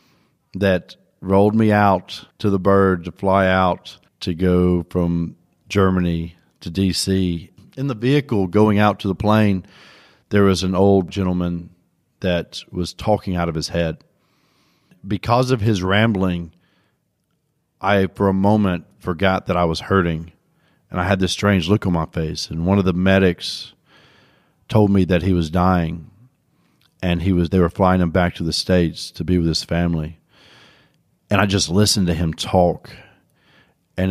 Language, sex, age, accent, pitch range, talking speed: English, male, 50-69, American, 90-115 Hz, 165 wpm